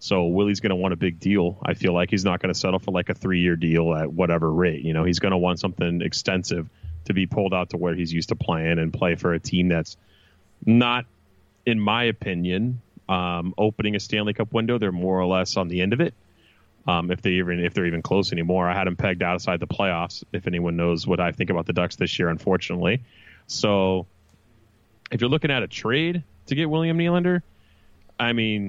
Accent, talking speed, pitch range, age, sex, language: American, 230 wpm, 90-115 Hz, 30-49, male, English